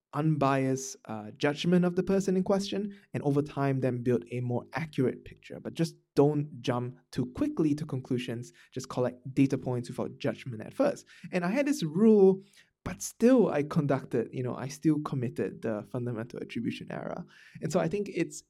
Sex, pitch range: male, 125-170 Hz